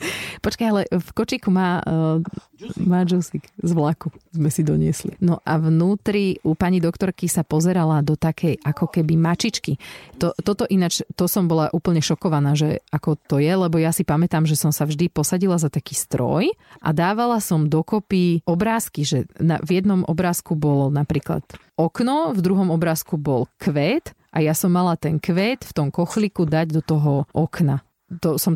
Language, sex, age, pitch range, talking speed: Slovak, female, 40-59, 155-190 Hz, 175 wpm